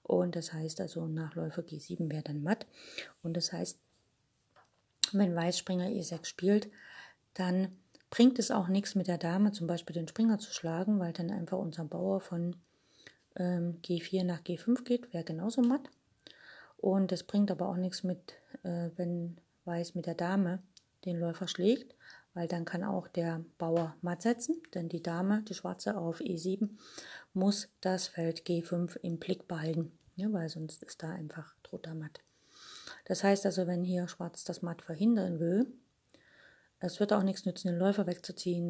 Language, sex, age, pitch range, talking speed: German, female, 30-49, 170-195 Hz, 165 wpm